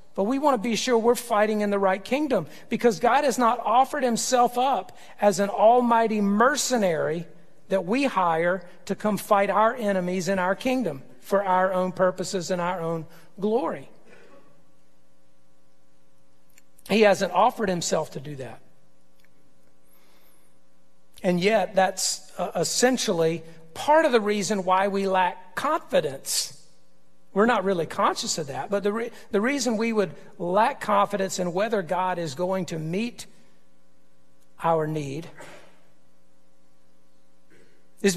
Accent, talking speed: American, 135 wpm